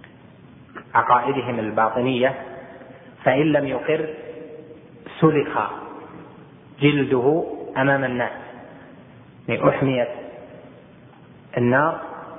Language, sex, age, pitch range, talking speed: Arabic, male, 30-49, 125-145 Hz, 55 wpm